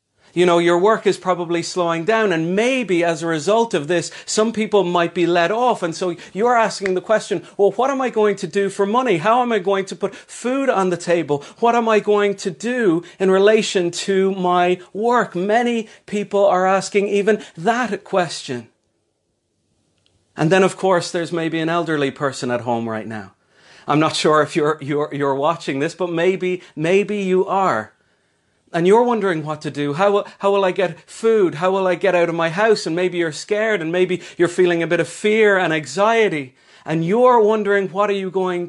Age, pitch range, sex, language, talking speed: 40-59, 165-210 Hz, male, English, 205 wpm